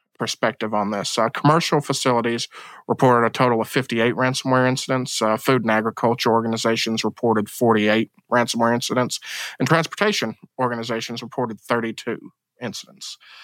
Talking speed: 125 wpm